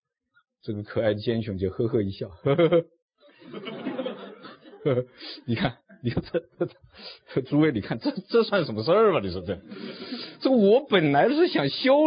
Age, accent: 50-69, native